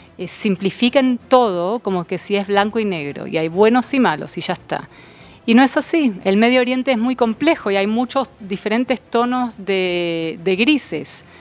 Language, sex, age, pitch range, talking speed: Spanish, female, 30-49, 180-225 Hz, 185 wpm